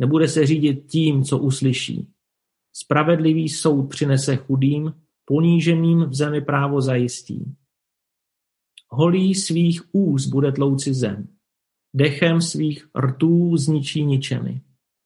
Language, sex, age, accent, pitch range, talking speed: Czech, male, 40-59, native, 130-155 Hz, 105 wpm